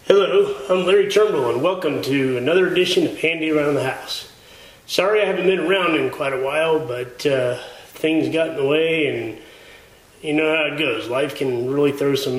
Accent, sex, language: American, male, English